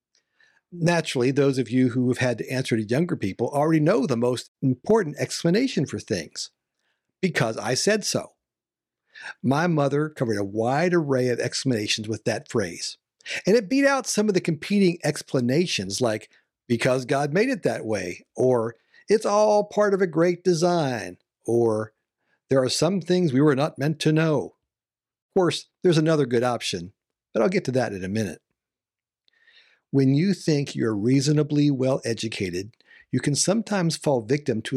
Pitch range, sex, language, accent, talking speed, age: 120-175 Hz, male, English, American, 165 wpm, 50-69